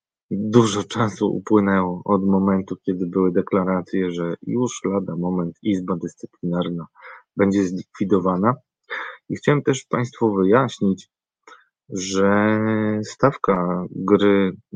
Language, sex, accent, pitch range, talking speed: Polish, male, native, 95-110 Hz, 100 wpm